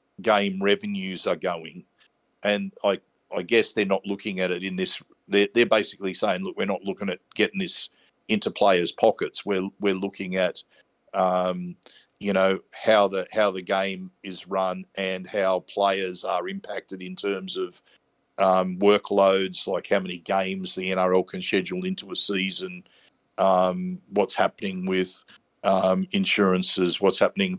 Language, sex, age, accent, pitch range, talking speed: English, male, 50-69, Australian, 95-105 Hz, 155 wpm